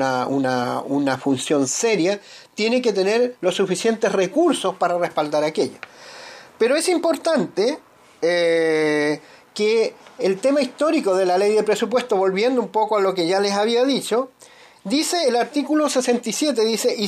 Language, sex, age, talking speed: Spanish, male, 40-59, 150 wpm